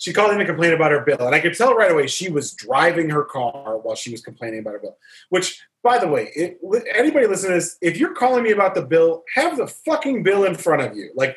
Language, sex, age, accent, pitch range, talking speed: English, male, 30-49, American, 135-190 Hz, 265 wpm